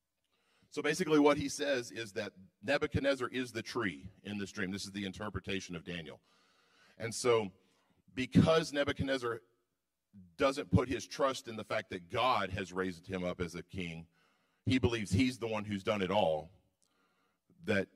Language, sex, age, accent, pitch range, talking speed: English, male, 40-59, American, 95-115 Hz, 165 wpm